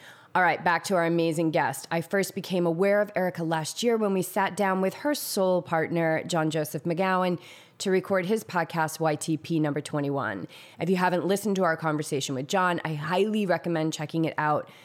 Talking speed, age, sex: 195 wpm, 20-39, female